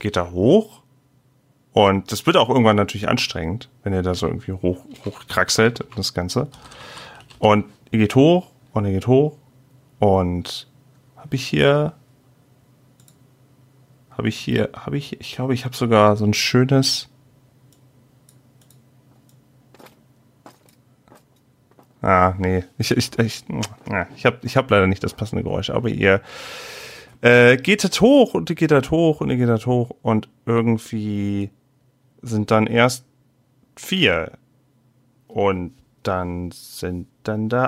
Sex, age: male, 40-59